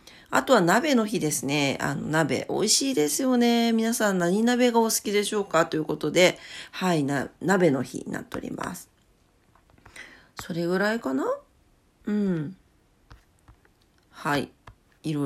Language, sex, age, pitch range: Japanese, female, 40-59, 160-235 Hz